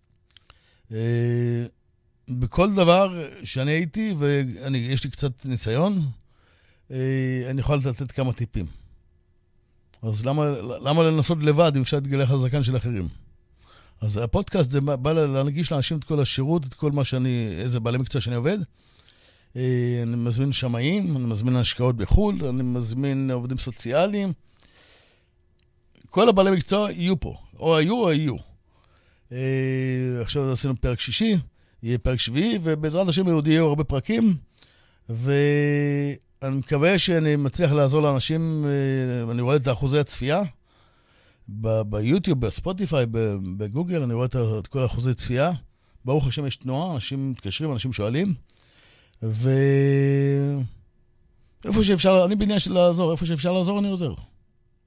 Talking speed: 130 wpm